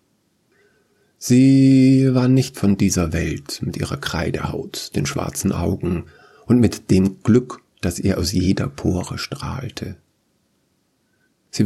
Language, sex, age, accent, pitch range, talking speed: German, male, 50-69, German, 95-120 Hz, 120 wpm